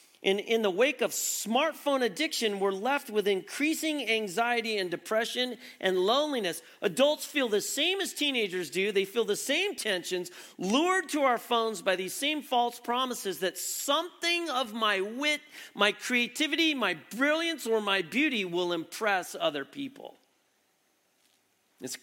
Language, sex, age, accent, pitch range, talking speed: English, male, 40-59, American, 185-275 Hz, 145 wpm